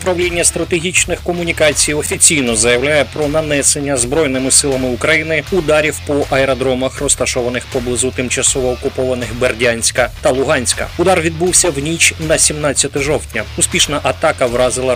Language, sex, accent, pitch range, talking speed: Ukrainian, male, native, 130-160 Hz, 120 wpm